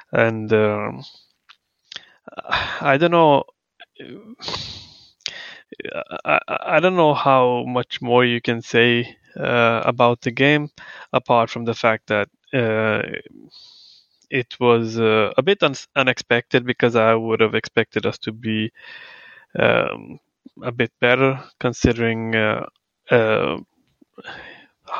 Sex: male